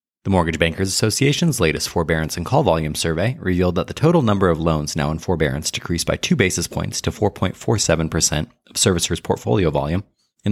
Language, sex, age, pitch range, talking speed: English, male, 30-49, 80-120 Hz, 185 wpm